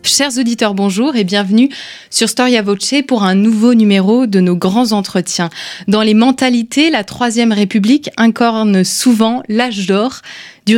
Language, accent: French, French